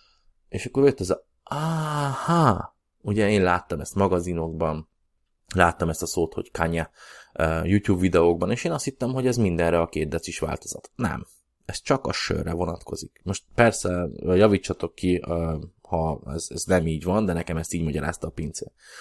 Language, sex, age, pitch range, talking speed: Hungarian, male, 20-39, 80-110 Hz, 165 wpm